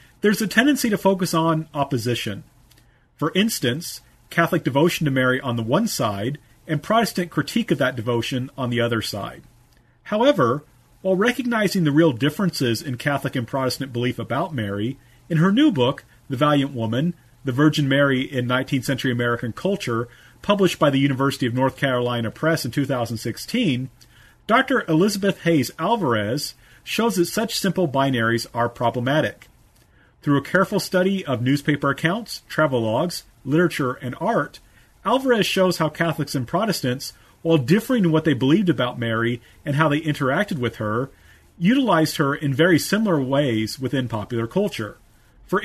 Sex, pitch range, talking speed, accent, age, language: male, 125-175 Hz, 155 wpm, American, 40-59, English